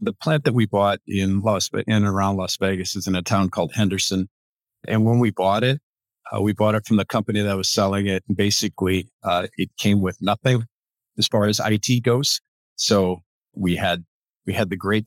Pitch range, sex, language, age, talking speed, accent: 90-105 Hz, male, English, 40-59, 205 wpm, American